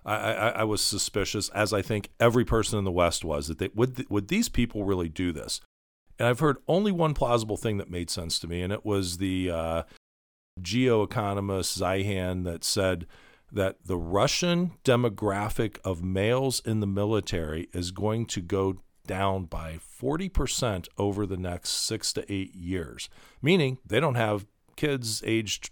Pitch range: 90-115 Hz